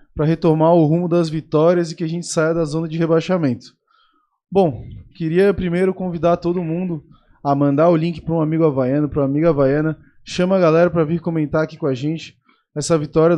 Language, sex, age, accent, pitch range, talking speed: Portuguese, male, 20-39, Brazilian, 150-180 Hz, 200 wpm